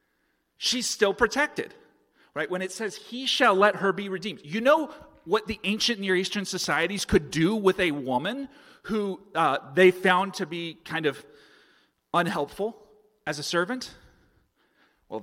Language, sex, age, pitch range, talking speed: English, male, 30-49, 145-210 Hz, 155 wpm